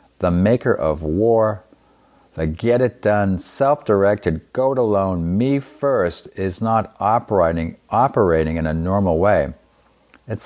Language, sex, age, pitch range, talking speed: English, male, 50-69, 80-105 Hz, 105 wpm